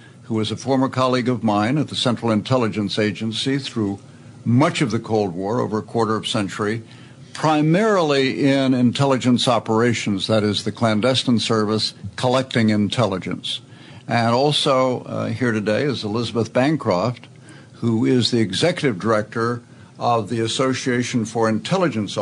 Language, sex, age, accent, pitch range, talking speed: English, male, 60-79, American, 110-130 Hz, 145 wpm